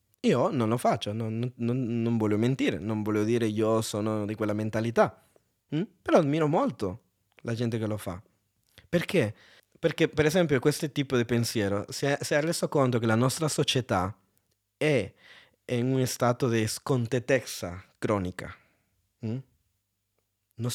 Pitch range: 105-130 Hz